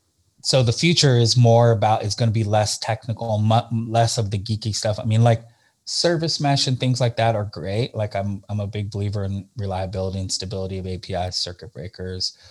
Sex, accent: male, American